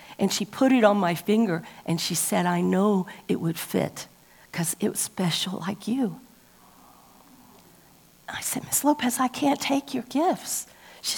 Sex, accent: female, American